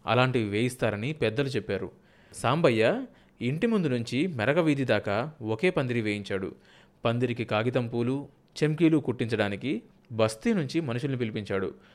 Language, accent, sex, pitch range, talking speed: Telugu, native, male, 110-150 Hz, 115 wpm